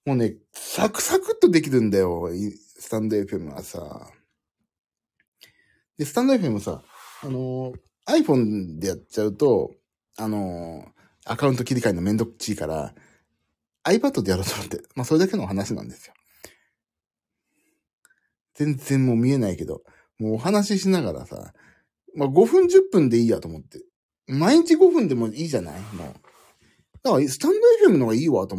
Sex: male